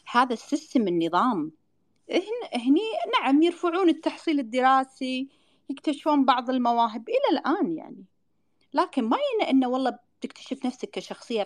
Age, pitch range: 40-59, 200-310 Hz